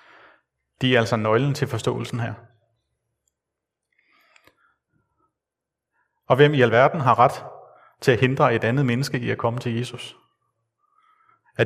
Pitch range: 120-140 Hz